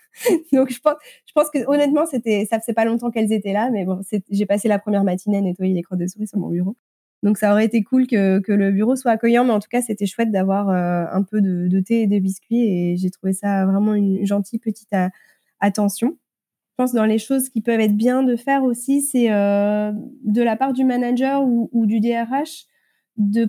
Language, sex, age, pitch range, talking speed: French, female, 20-39, 205-245 Hz, 235 wpm